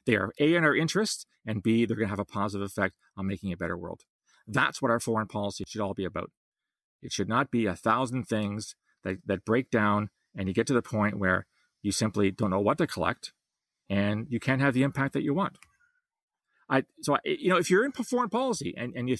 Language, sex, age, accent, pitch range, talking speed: English, male, 40-59, American, 100-135 Hz, 240 wpm